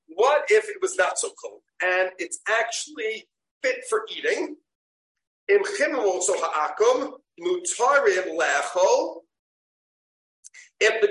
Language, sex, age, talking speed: English, male, 50-69, 80 wpm